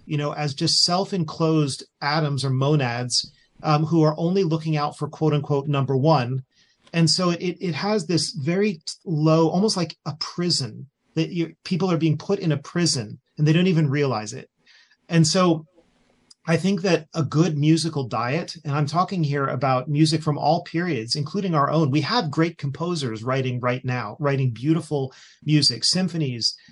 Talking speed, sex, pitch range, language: 175 wpm, male, 135-165 Hz, English